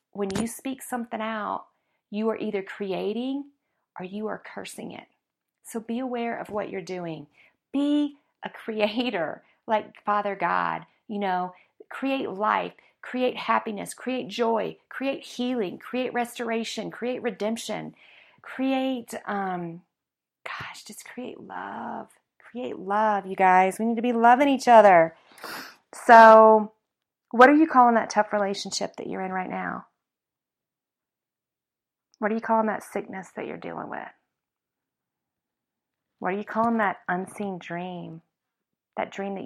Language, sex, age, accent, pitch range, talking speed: English, female, 40-59, American, 190-240 Hz, 140 wpm